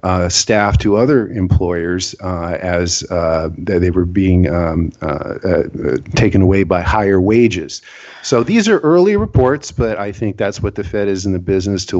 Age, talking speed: 50-69, 180 wpm